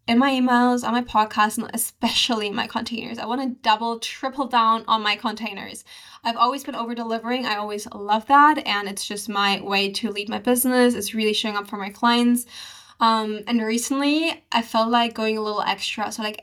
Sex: female